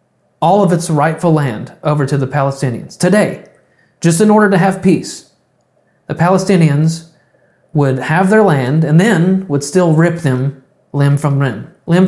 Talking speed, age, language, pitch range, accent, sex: 160 wpm, 30-49, English, 140-175 Hz, American, male